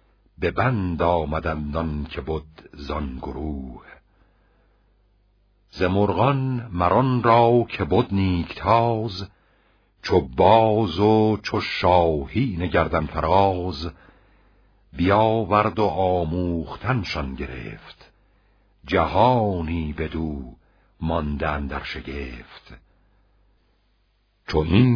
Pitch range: 80-100 Hz